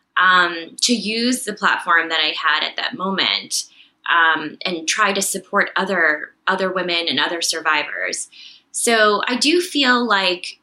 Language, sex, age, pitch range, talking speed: English, female, 20-39, 185-260 Hz, 150 wpm